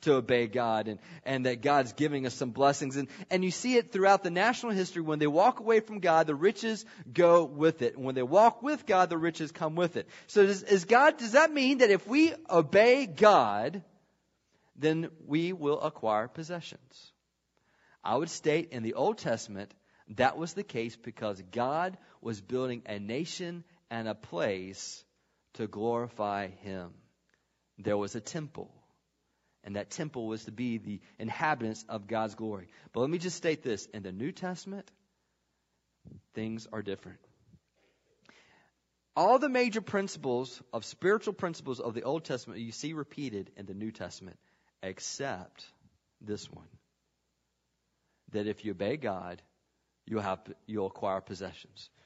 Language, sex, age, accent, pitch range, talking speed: English, male, 40-59, American, 110-180 Hz, 160 wpm